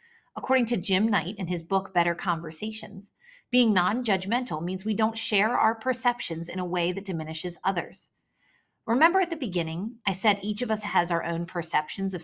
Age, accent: 30-49, American